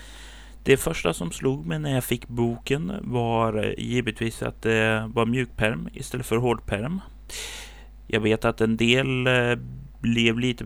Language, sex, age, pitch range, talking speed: Swedish, male, 30-49, 110-125 Hz, 140 wpm